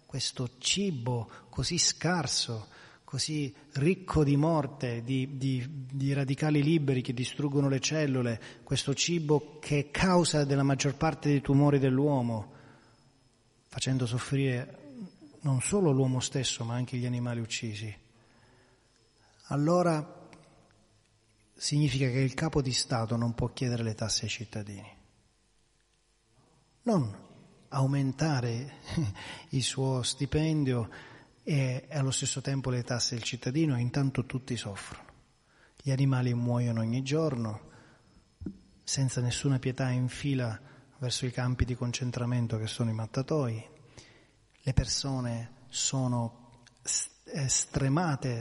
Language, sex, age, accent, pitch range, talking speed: Italian, male, 30-49, native, 120-145 Hz, 115 wpm